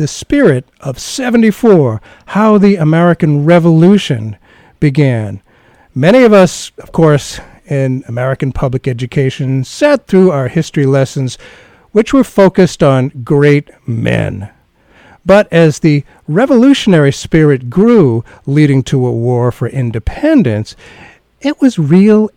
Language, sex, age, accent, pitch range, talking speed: English, male, 50-69, American, 125-185 Hz, 120 wpm